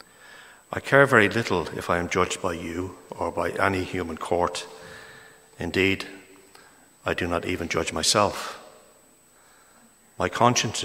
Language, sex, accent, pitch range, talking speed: English, male, Irish, 90-105 Hz, 135 wpm